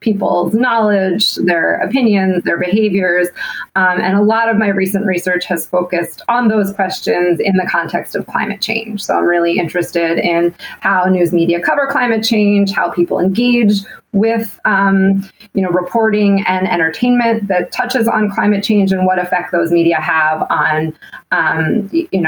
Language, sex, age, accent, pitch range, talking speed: English, female, 30-49, American, 175-210 Hz, 150 wpm